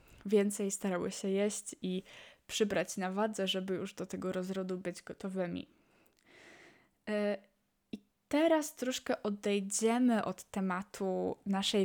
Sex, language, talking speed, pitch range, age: female, Polish, 110 wpm, 185-215 Hz, 20-39